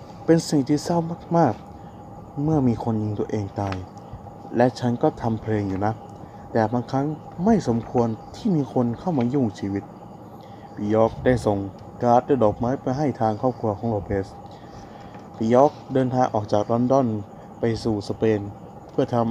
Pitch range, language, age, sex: 105-145 Hz, Thai, 20-39, male